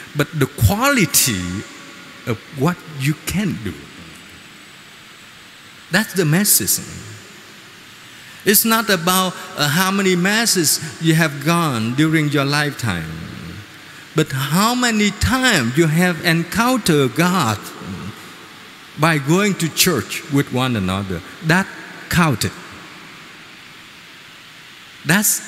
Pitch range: 145-195 Hz